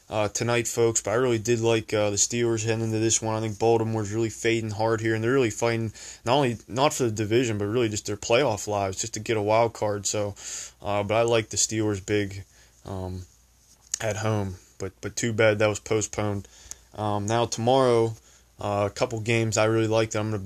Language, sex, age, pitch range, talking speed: English, male, 20-39, 105-115 Hz, 220 wpm